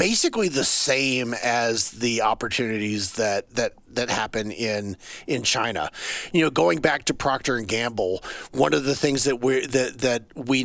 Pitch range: 110-135 Hz